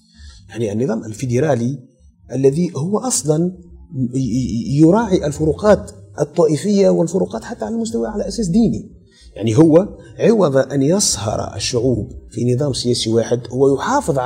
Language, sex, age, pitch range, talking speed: Arabic, male, 30-49, 110-170 Hz, 115 wpm